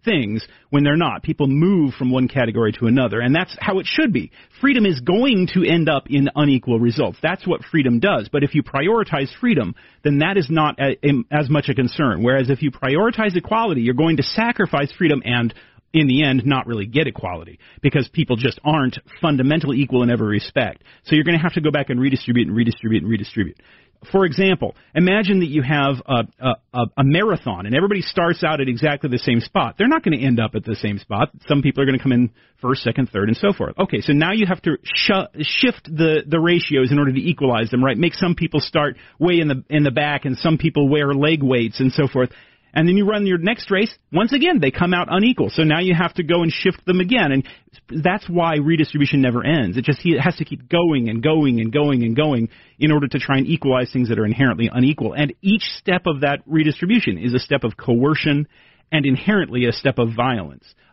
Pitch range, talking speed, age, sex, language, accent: 130-175 Hz, 225 wpm, 40-59, male, English, American